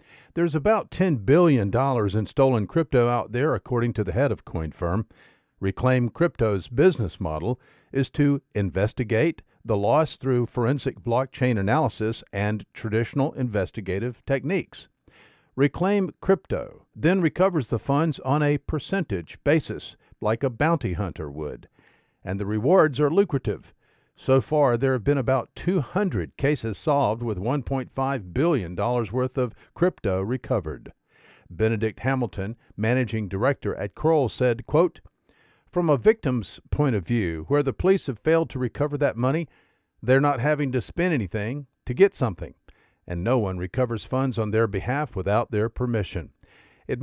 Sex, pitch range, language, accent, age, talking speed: male, 105-145 Hz, English, American, 50-69, 145 wpm